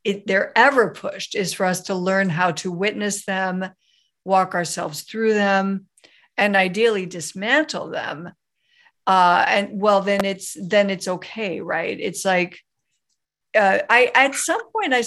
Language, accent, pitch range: English, American, 190-235 Hz